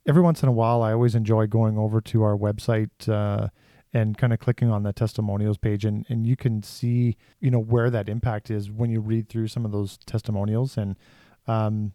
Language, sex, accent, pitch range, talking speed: English, male, American, 110-135 Hz, 215 wpm